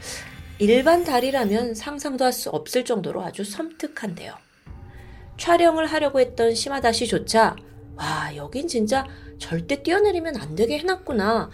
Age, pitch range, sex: 30-49, 200-325 Hz, female